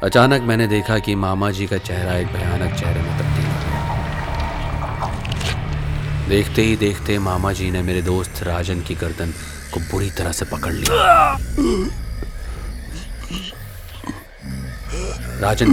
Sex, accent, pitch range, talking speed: male, native, 85-100 Hz, 120 wpm